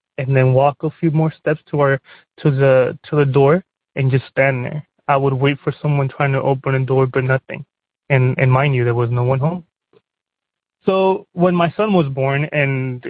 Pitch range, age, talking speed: 130-155 Hz, 20-39, 210 wpm